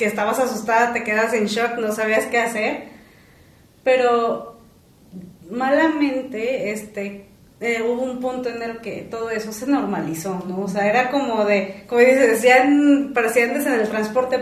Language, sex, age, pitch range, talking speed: Spanish, female, 30-49, 205-260 Hz, 160 wpm